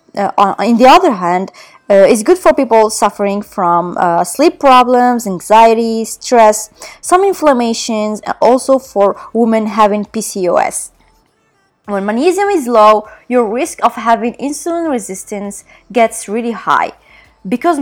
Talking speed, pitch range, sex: 135 wpm, 200-265 Hz, female